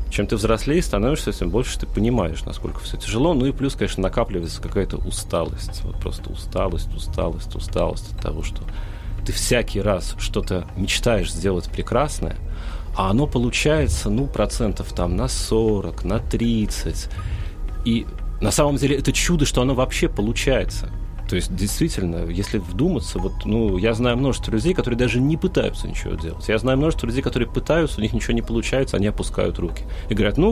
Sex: male